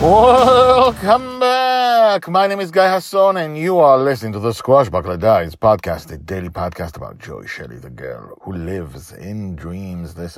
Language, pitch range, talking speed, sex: English, 85-125 Hz, 175 wpm, male